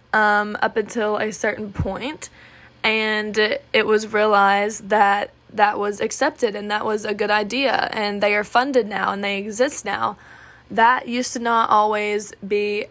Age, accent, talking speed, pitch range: 10-29, American, 165 wpm, 205-225 Hz